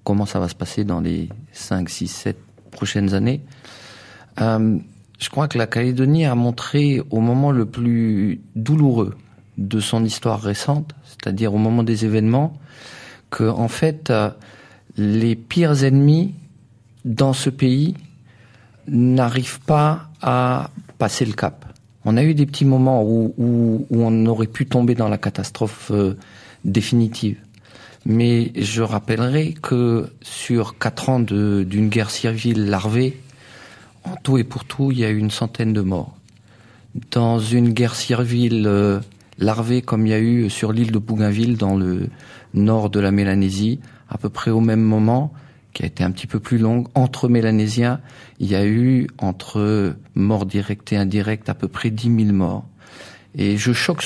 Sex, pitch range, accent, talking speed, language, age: male, 105-130 Hz, French, 160 wpm, French, 40-59